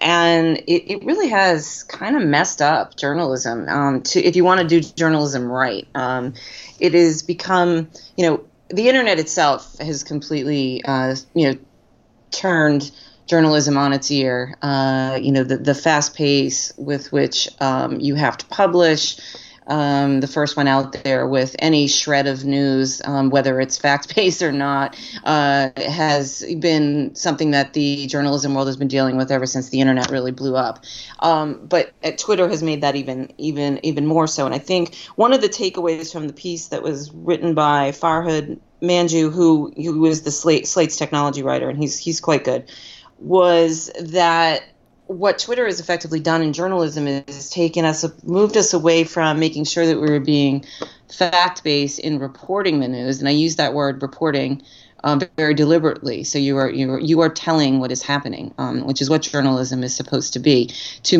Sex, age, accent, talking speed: female, 30-49, American, 180 wpm